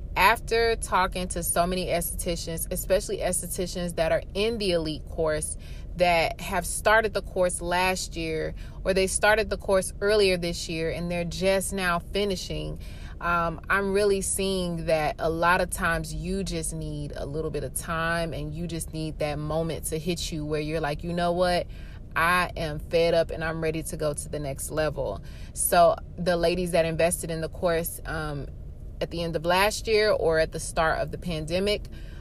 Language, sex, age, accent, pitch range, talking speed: English, female, 20-39, American, 160-185 Hz, 190 wpm